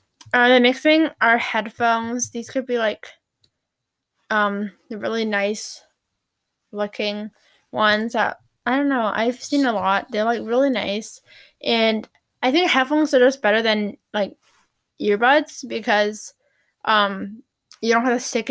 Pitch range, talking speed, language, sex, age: 210-250 Hz, 145 wpm, English, female, 10-29